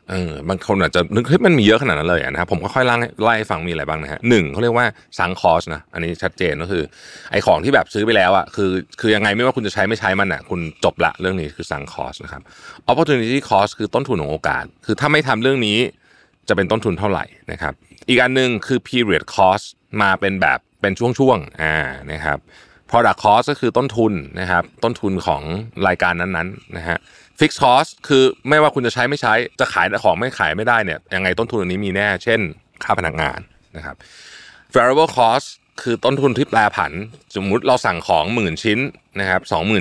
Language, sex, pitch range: Thai, male, 85-120 Hz